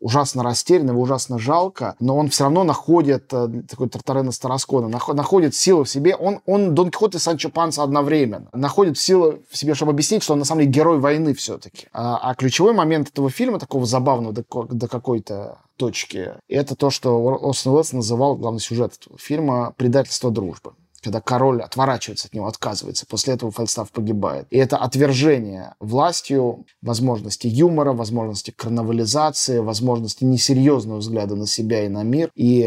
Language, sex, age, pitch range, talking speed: Russian, male, 20-39, 115-145 Hz, 160 wpm